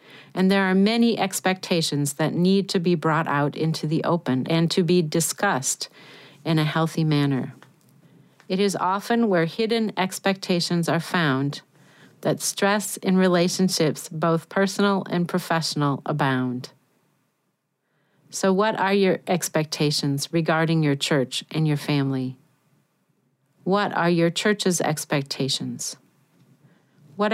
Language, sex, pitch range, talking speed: English, female, 145-195 Hz, 125 wpm